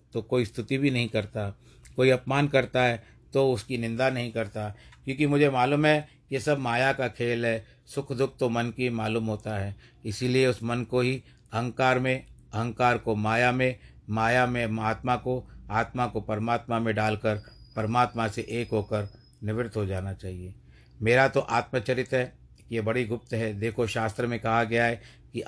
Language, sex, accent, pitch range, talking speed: Hindi, male, native, 110-125 Hz, 180 wpm